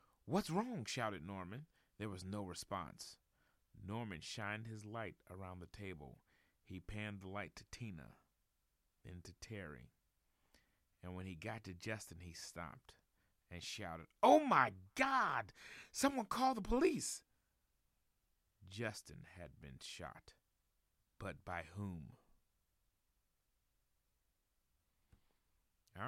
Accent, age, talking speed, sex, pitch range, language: American, 40-59, 115 wpm, male, 90-120 Hz, English